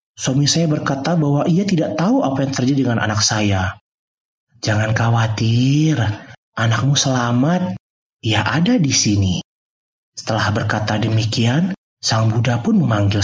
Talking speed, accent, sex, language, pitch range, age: 125 wpm, native, male, Indonesian, 105-165 Hz, 30-49